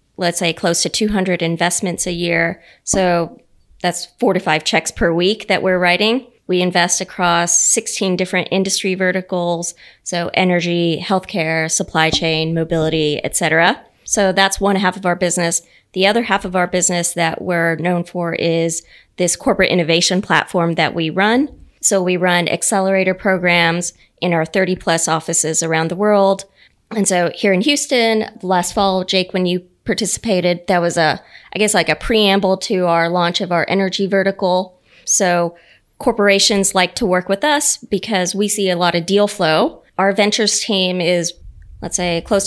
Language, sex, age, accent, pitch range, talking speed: English, female, 20-39, American, 175-200 Hz, 170 wpm